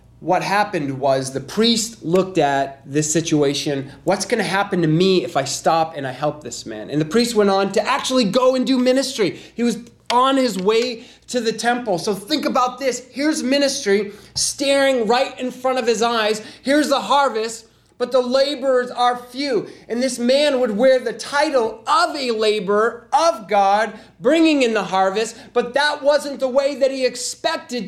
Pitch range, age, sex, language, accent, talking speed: 220-275 Hz, 30-49, male, English, American, 185 wpm